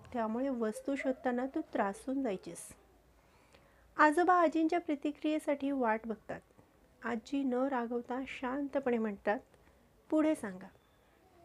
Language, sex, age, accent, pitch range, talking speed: Marathi, female, 30-49, native, 245-285 Hz, 95 wpm